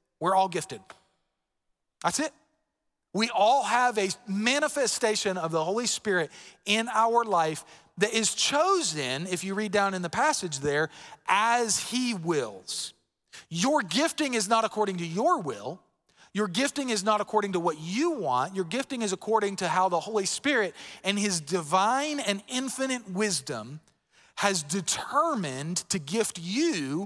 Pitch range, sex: 170-235 Hz, male